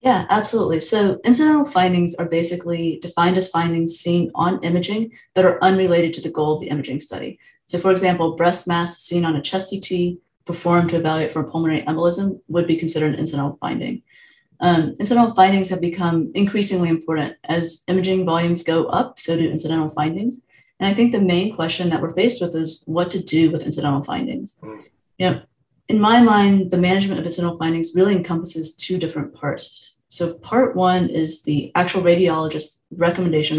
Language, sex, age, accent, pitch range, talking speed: English, female, 30-49, American, 160-190 Hz, 175 wpm